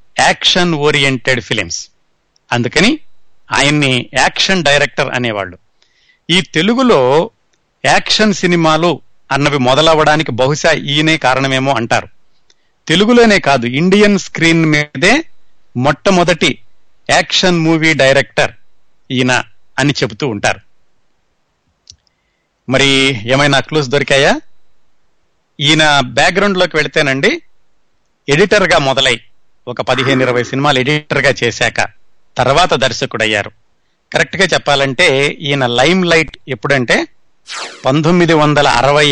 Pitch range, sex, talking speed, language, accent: 130-165 Hz, male, 90 wpm, Telugu, native